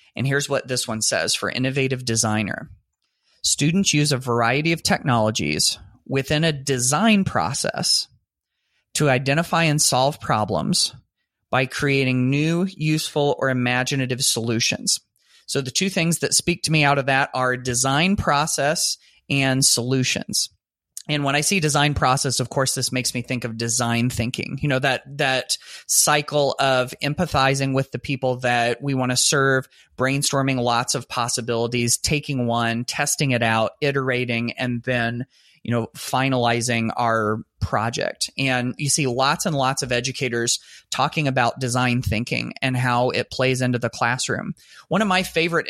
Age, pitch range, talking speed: 30-49, 120-145 Hz, 155 wpm